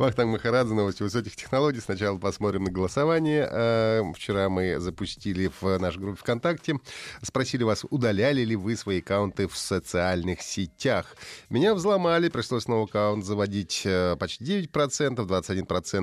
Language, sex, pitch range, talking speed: Russian, male, 95-145 Hz, 125 wpm